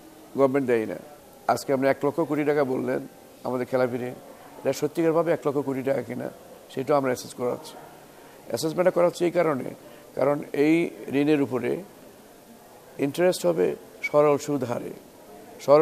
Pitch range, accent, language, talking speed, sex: 130-170 Hz, native, Bengali, 145 wpm, male